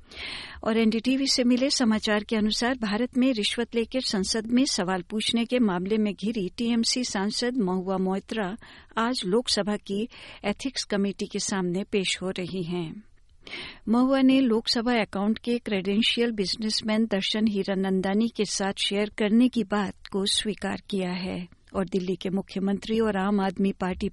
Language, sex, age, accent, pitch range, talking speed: Hindi, female, 60-79, native, 195-230 Hz, 150 wpm